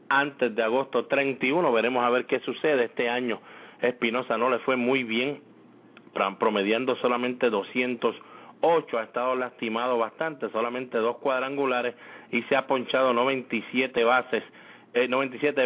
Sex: male